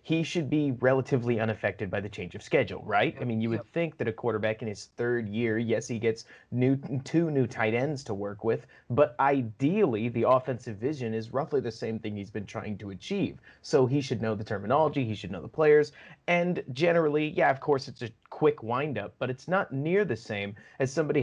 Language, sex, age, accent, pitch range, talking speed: English, male, 30-49, American, 115-150 Hz, 215 wpm